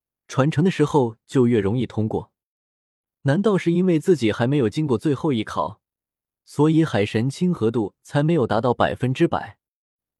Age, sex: 20-39, male